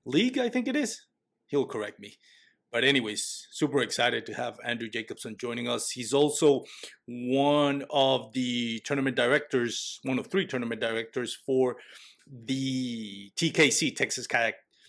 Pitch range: 120-145 Hz